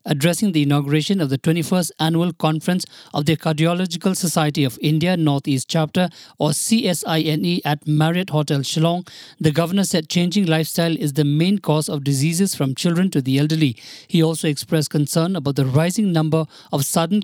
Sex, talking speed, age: male, 165 wpm, 50-69